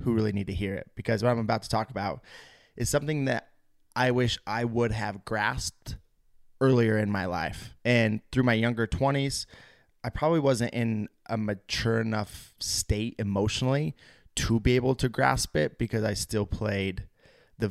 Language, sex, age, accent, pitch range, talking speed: English, male, 20-39, American, 100-120 Hz, 175 wpm